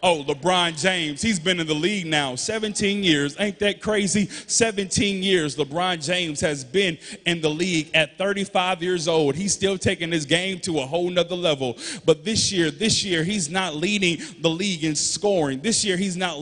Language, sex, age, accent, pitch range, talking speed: English, male, 30-49, American, 160-215 Hz, 195 wpm